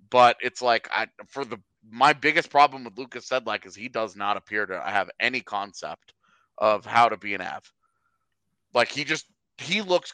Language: English